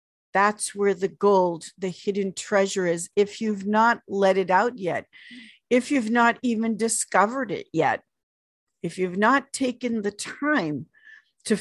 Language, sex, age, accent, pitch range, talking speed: English, female, 50-69, American, 180-225 Hz, 150 wpm